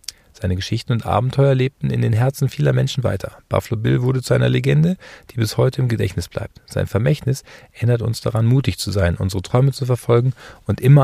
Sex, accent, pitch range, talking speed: male, German, 105-130 Hz, 200 wpm